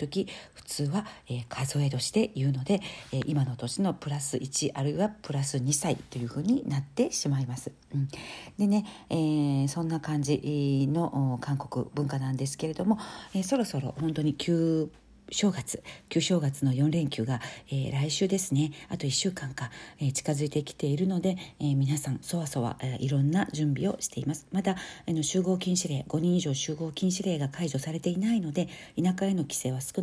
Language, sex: Japanese, female